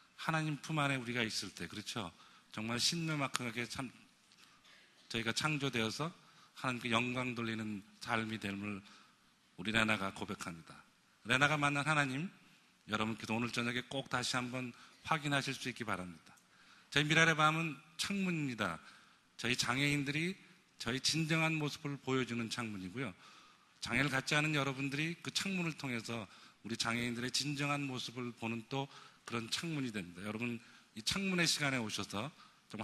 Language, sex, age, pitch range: Korean, male, 40-59, 110-145 Hz